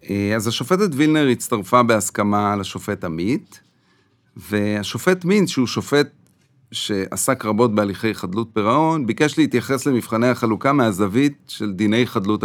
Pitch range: 105-145 Hz